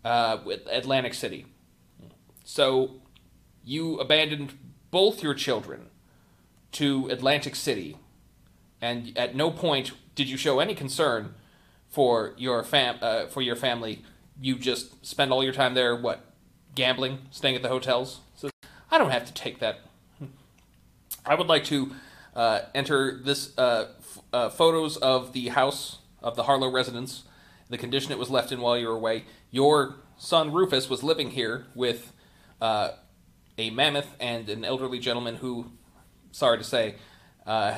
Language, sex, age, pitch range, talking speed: English, male, 30-49, 120-140 Hz, 150 wpm